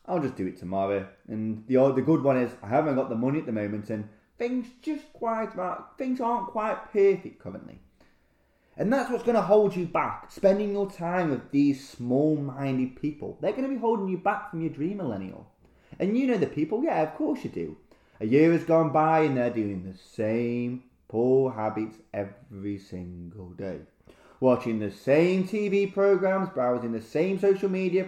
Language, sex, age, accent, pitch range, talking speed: English, male, 20-39, British, 125-190 Hz, 190 wpm